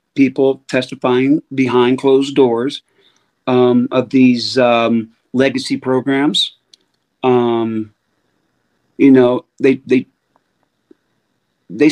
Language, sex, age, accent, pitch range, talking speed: English, male, 50-69, American, 130-160 Hz, 85 wpm